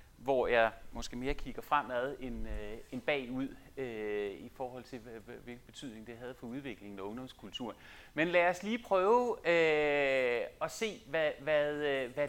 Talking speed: 160 wpm